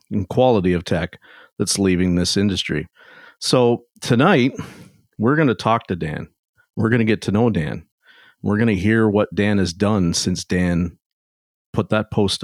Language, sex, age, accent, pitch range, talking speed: English, male, 50-69, American, 90-110 Hz, 175 wpm